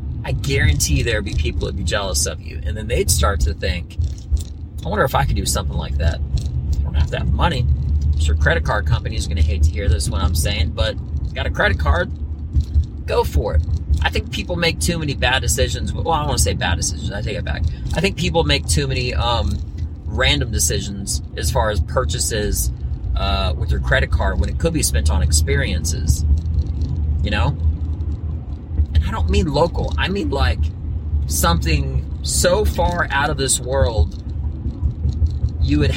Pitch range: 75-85 Hz